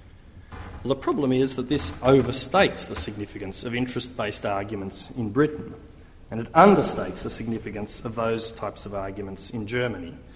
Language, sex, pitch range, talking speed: English, male, 100-145 Hz, 145 wpm